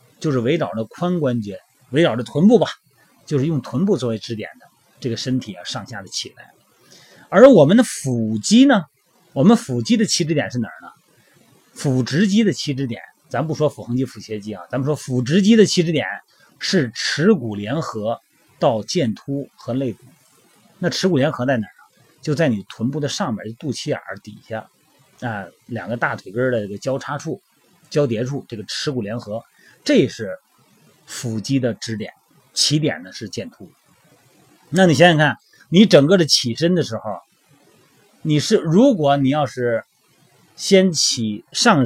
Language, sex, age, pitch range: Chinese, male, 30-49, 115-170 Hz